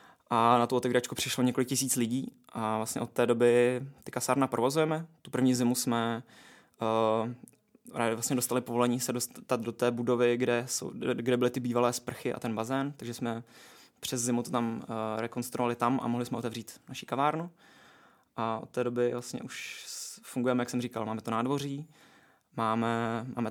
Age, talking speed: 20-39, 175 wpm